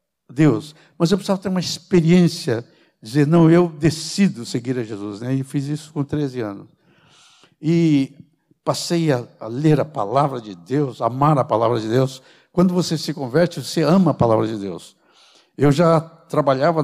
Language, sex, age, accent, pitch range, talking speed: Portuguese, male, 60-79, Brazilian, 130-170 Hz, 170 wpm